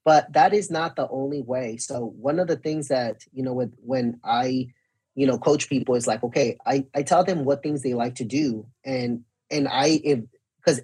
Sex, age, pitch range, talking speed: male, 30-49, 130-190 Hz, 210 wpm